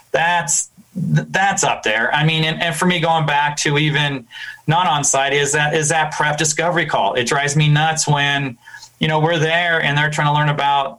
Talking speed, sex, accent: 215 wpm, male, American